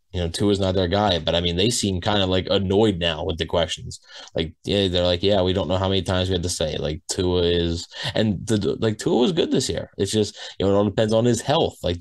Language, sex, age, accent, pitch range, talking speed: English, male, 20-39, American, 90-110 Hz, 290 wpm